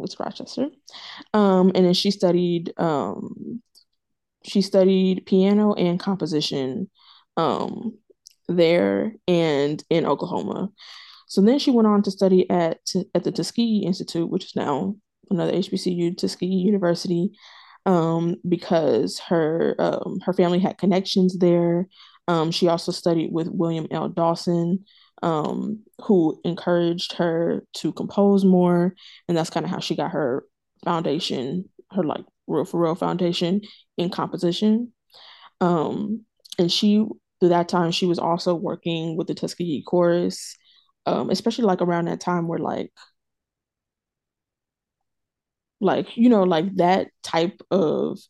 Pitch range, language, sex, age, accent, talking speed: 170-200 Hz, English, female, 20-39, American, 135 wpm